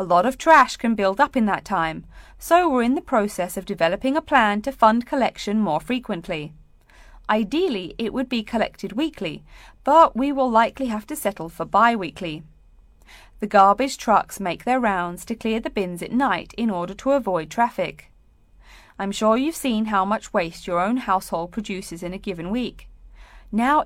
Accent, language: British, Chinese